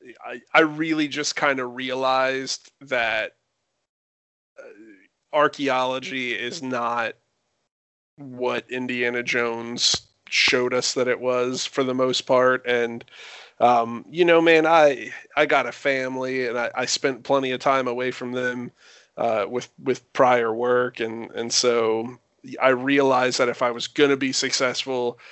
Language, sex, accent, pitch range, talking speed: English, male, American, 125-140 Hz, 145 wpm